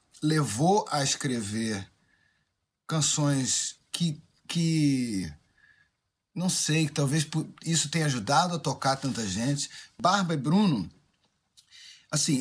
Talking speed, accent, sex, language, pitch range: 95 wpm, Brazilian, male, Portuguese, 145-195 Hz